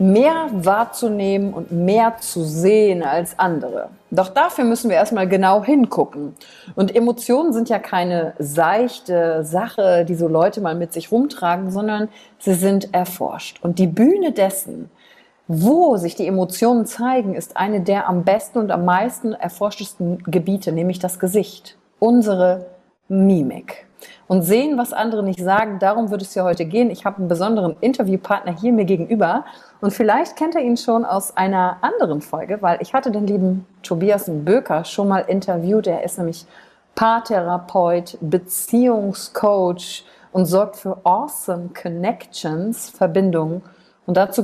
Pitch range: 175-215 Hz